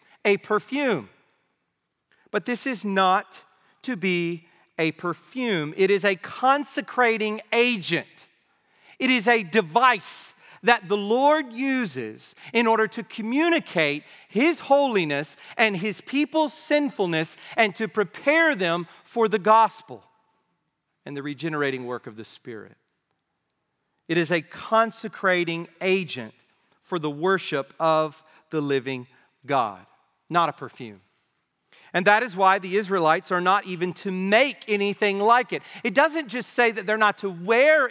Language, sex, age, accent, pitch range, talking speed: English, male, 40-59, American, 160-235 Hz, 135 wpm